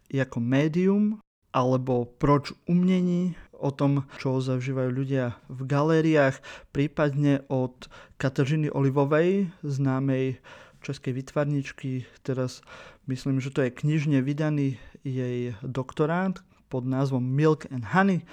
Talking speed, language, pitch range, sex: 110 wpm, Slovak, 135-155 Hz, male